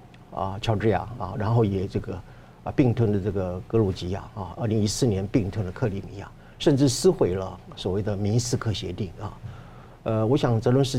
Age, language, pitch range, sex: 50-69, Chinese, 100-130 Hz, male